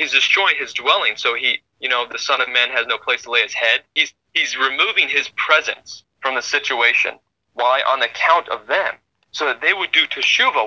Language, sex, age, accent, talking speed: English, male, 20-39, American, 215 wpm